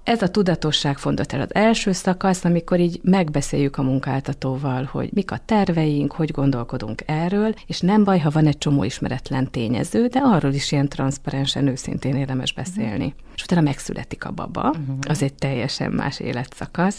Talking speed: 165 wpm